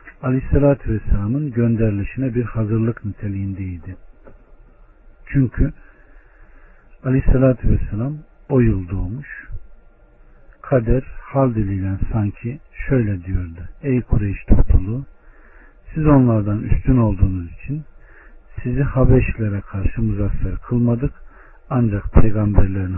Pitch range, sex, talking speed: 95-120 Hz, male, 80 wpm